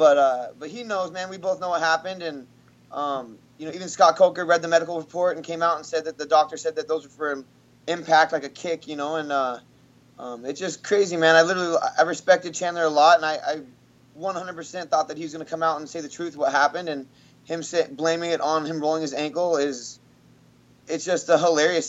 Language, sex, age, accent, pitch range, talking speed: English, male, 20-39, American, 140-165 Hz, 245 wpm